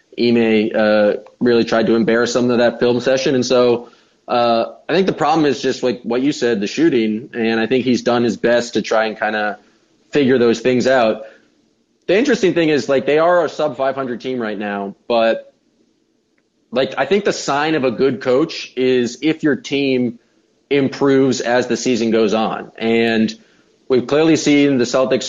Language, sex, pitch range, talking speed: English, male, 115-135 Hz, 190 wpm